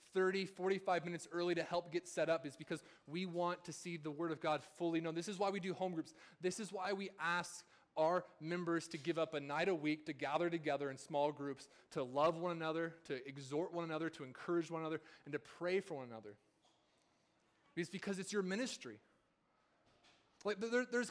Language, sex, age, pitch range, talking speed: English, male, 30-49, 160-190 Hz, 205 wpm